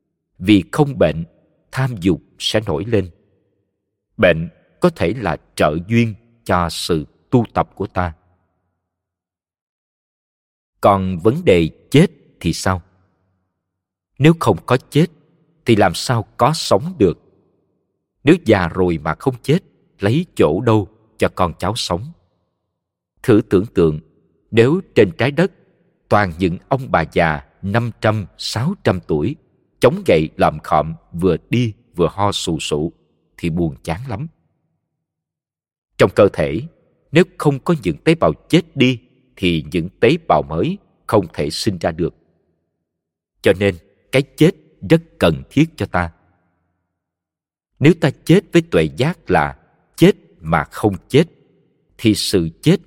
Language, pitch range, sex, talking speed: Vietnamese, 90-140 Hz, male, 135 wpm